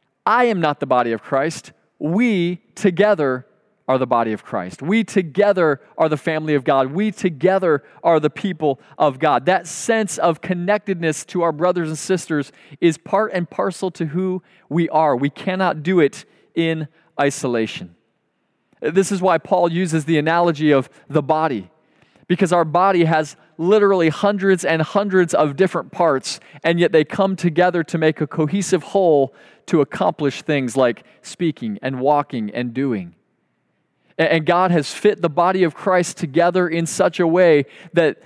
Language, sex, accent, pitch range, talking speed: English, male, American, 150-185 Hz, 165 wpm